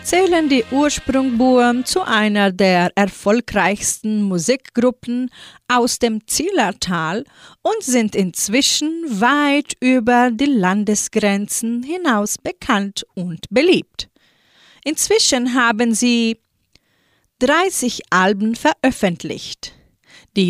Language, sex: German, female